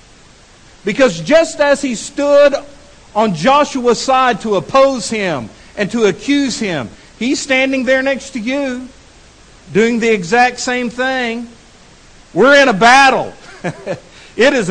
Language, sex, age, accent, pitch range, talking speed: English, male, 50-69, American, 215-275 Hz, 130 wpm